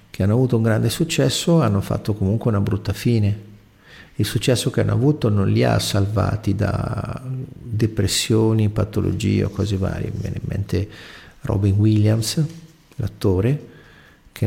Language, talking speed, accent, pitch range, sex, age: Italian, 145 wpm, native, 100-135 Hz, male, 50-69